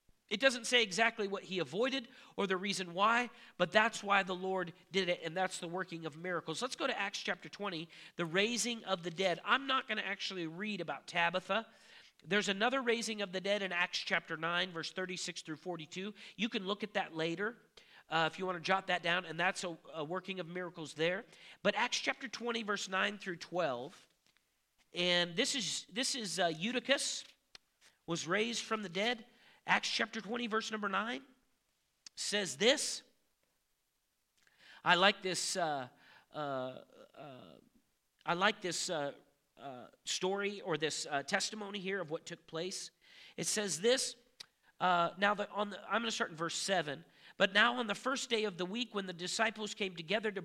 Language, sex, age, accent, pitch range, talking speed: English, male, 40-59, American, 175-220 Hz, 185 wpm